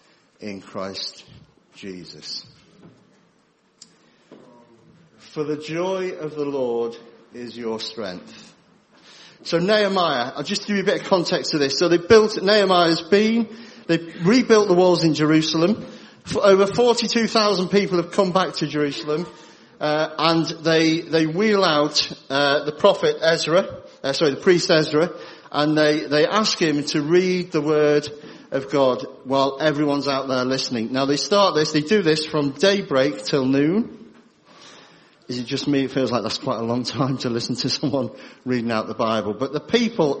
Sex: male